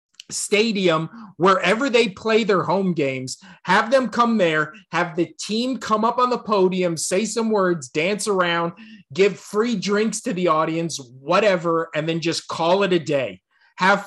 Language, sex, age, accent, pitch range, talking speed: English, male, 30-49, American, 165-215 Hz, 165 wpm